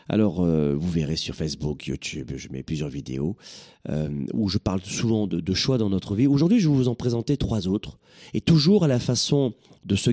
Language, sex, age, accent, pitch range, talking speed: French, male, 40-59, French, 100-155 Hz, 220 wpm